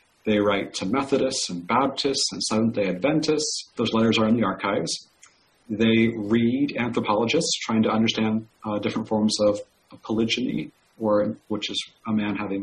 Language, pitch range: English, 100-115 Hz